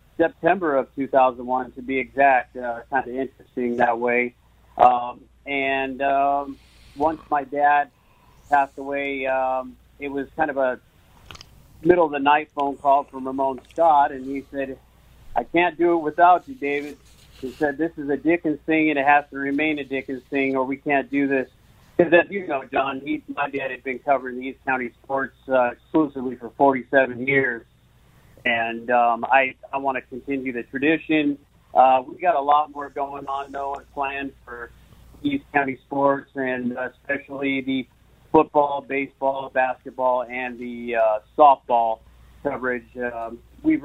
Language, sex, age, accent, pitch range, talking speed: English, male, 40-59, American, 125-145 Hz, 155 wpm